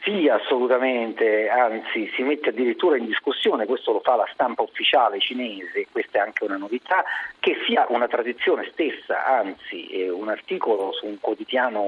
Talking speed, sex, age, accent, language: 155 wpm, male, 50-69, native, Italian